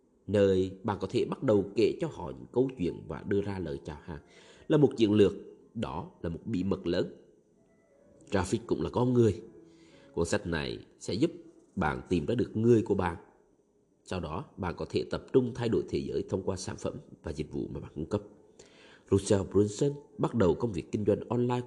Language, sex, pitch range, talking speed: Vietnamese, male, 90-120 Hz, 210 wpm